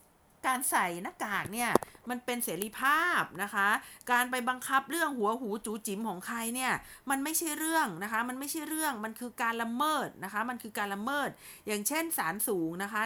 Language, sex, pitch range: Thai, female, 210-265 Hz